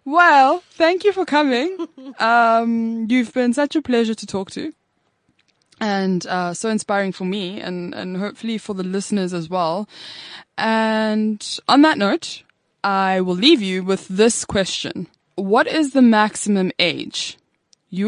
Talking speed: 150 wpm